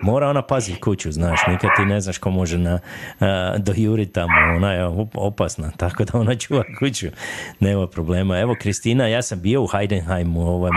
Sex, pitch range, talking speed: male, 90-105 Hz, 175 wpm